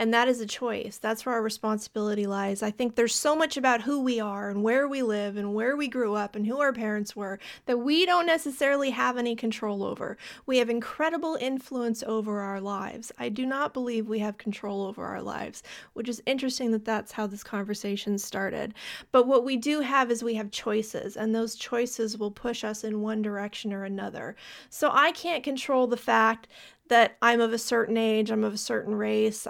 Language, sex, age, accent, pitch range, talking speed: English, female, 30-49, American, 210-250 Hz, 210 wpm